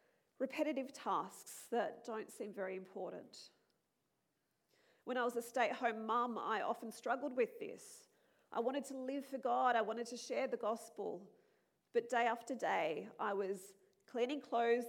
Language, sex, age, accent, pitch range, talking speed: English, female, 40-59, Australian, 235-305 Hz, 155 wpm